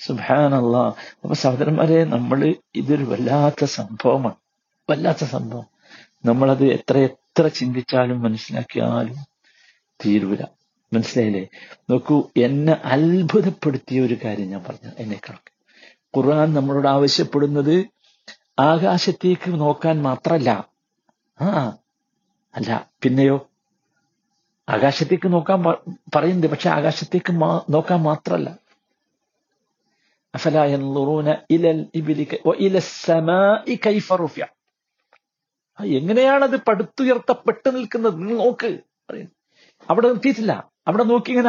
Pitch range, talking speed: 140-215 Hz, 70 wpm